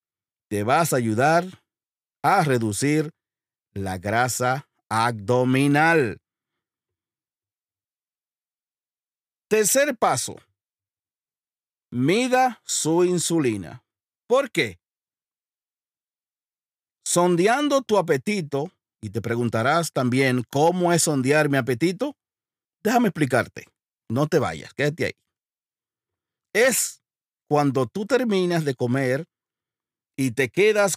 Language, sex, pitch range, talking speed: Spanish, male, 125-180 Hz, 85 wpm